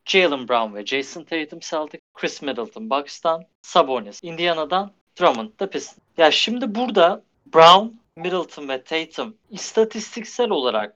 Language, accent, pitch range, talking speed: Turkish, native, 130-195 Hz, 125 wpm